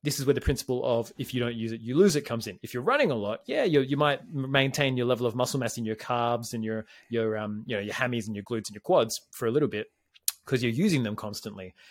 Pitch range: 115-150 Hz